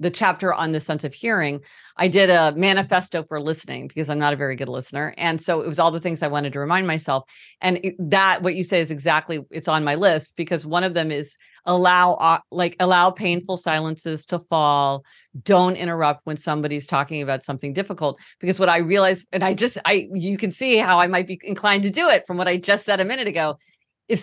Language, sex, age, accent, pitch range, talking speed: English, female, 40-59, American, 155-195 Hz, 225 wpm